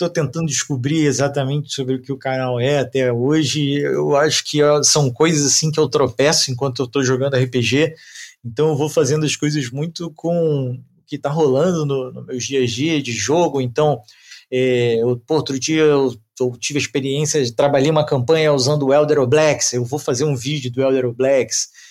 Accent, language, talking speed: Brazilian, Portuguese, 195 wpm